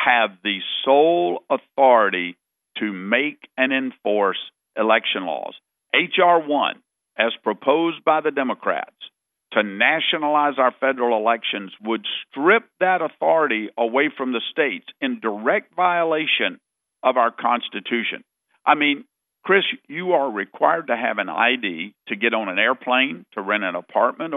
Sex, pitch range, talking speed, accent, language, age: male, 115-180 Hz, 135 wpm, American, English, 50-69